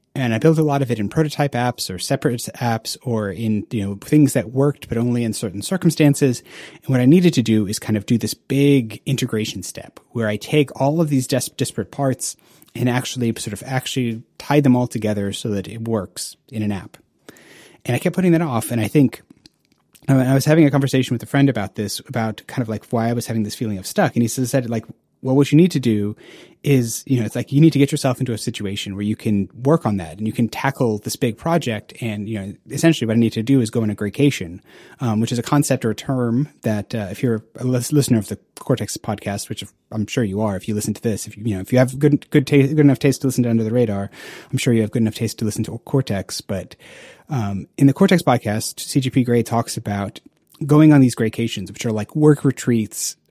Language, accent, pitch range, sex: English, American, 110-140 Hz, male